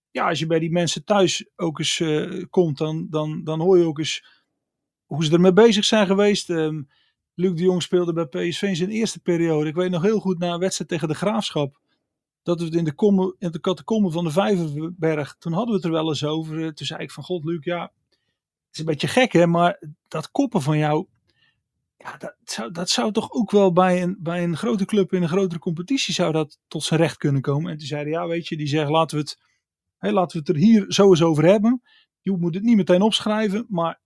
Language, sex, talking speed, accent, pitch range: Dutch, male, 240 wpm, Dutch, 160-205 Hz